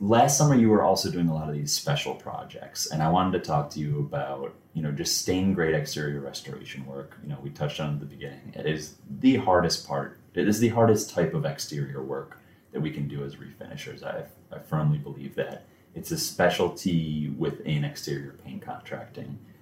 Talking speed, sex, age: 205 wpm, male, 30-49